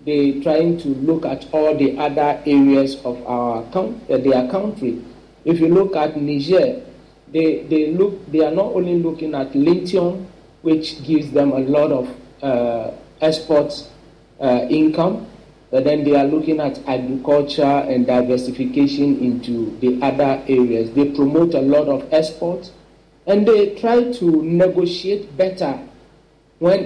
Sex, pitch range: male, 140-175 Hz